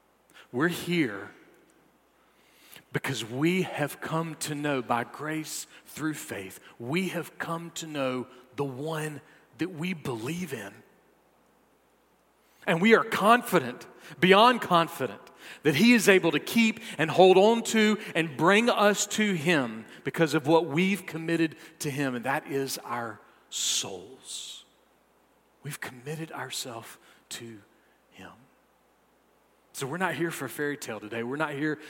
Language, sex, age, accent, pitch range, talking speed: English, male, 40-59, American, 120-175 Hz, 135 wpm